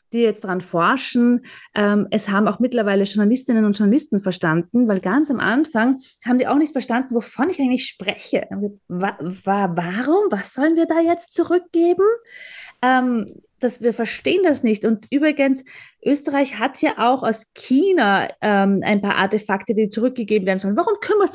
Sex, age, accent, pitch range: female, 20-39, German, 210-285 Hz